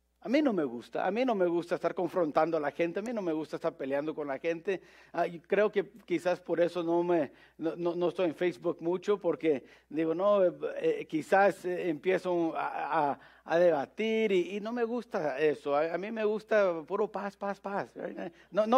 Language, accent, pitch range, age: English, Mexican, 155-205 Hz, 50-69